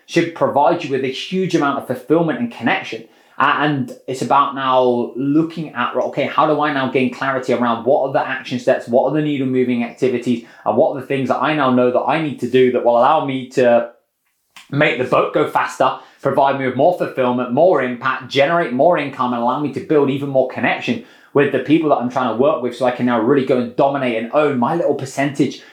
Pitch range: 120-140 Hz